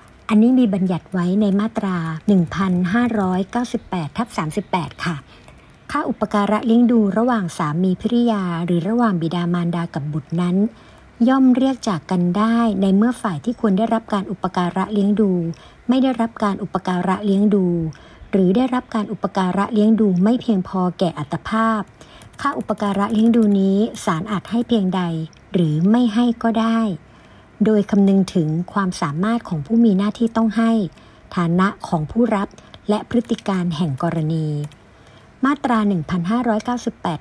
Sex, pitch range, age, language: male, 175-225 Hz, 60-79, Thai